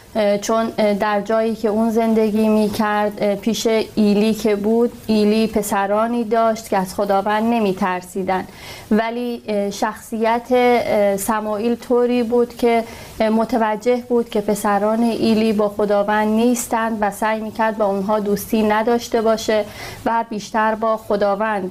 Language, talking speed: Persian, 130 wpm